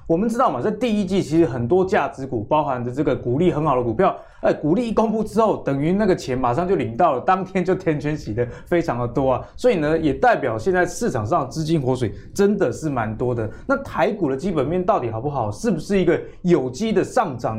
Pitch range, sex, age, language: 125-175 Hz, male, 20-39, Chinese